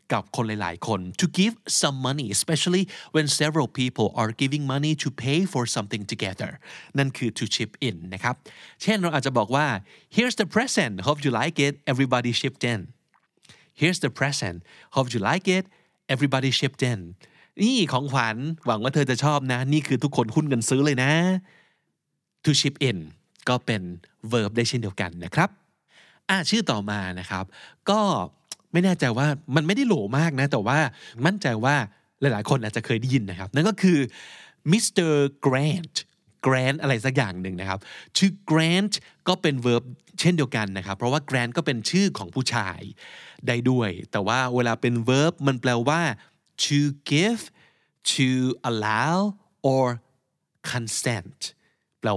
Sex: male